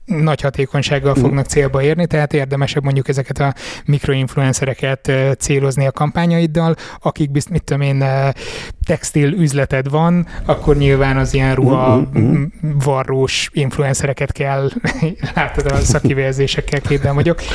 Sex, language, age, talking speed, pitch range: male, Hungarian, 20-39, 120 wpm, 135-150 Hz